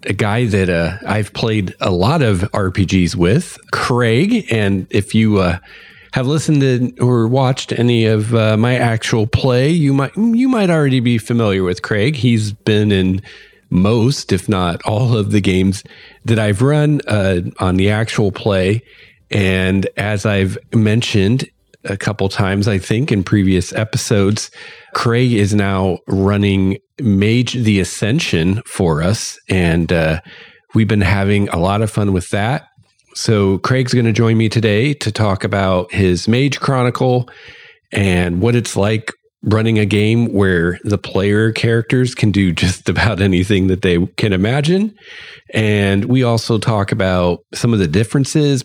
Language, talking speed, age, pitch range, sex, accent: English, 160 wpm, 40-59, 95-120 Hz, male, American